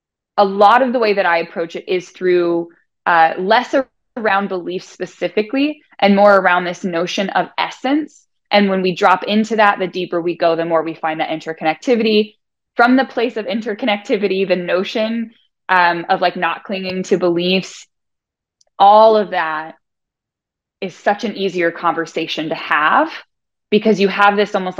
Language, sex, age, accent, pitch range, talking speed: English, female, 20-39, American, 170-210 Hz, 165 wpm